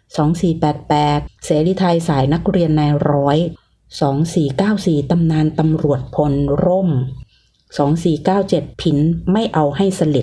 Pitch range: 140-170 Hz